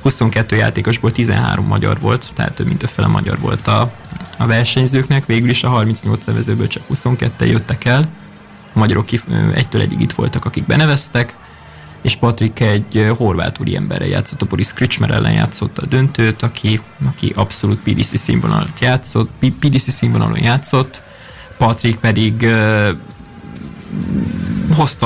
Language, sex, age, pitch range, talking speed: Hungarian, male, 20-39, 110-130 Hz, 130 wpm